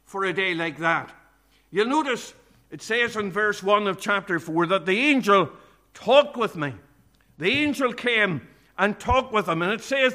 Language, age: English, 60-79